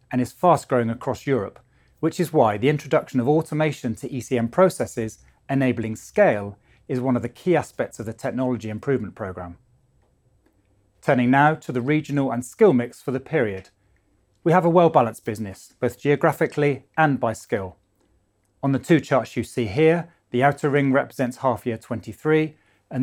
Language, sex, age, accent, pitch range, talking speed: English, male, 30-49, British, 105-140 Hz, 165 wpm